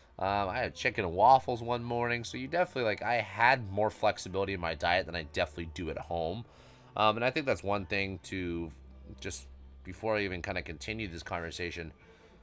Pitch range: 95-125 Hz